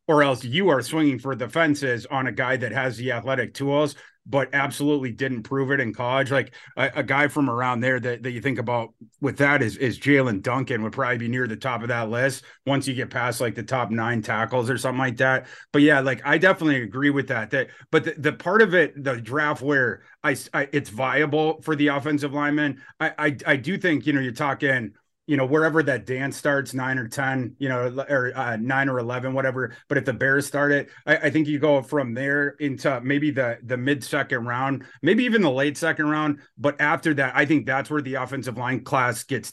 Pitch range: 130-145 Hz